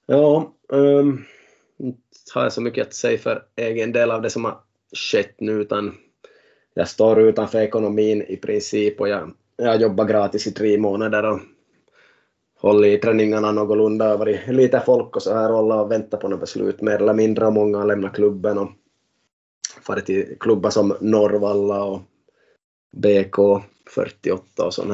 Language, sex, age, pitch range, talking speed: Swedish, male, 20-39, 105-120 Hz, 160 wpm